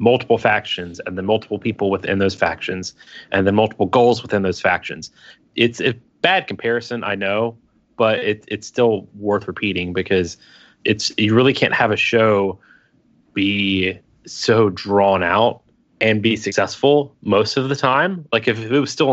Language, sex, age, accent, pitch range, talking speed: English, male, 20-39, American, 95-115 Hz, 160 wpm